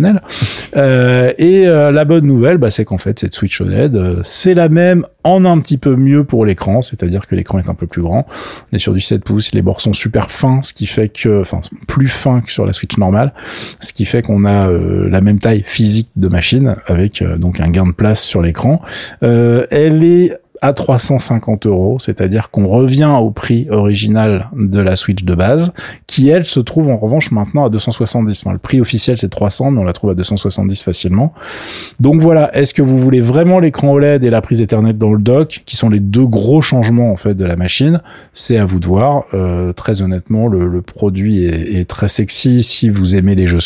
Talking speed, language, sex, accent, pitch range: 220 wpm, French, male, French, 100-135 Hz